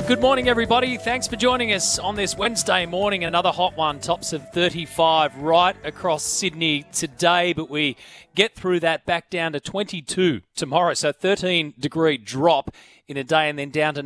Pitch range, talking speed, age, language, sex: 150-180 Hz, 175 wpm, 30-49, English, male